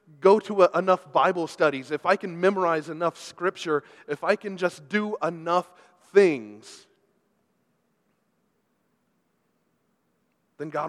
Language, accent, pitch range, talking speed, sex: English, American, 130-175 Hz, 115 wpm, male